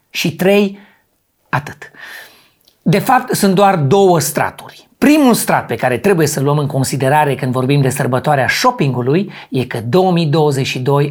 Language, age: Romanian, 40-59